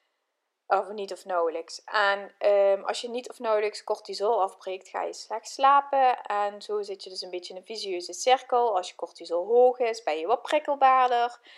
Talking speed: 190 wpm